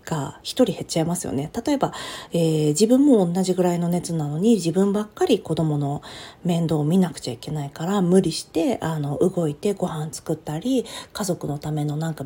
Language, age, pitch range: Japanese, 40-59, 155-250 Hz